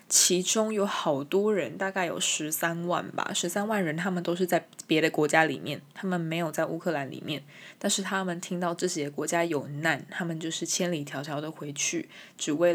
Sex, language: female, Chinese